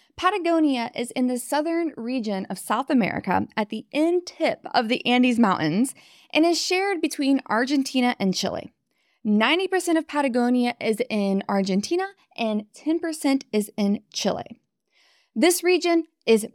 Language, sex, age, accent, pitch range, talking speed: English, female, 20-39, American, 220-310 Hz, 140 wpm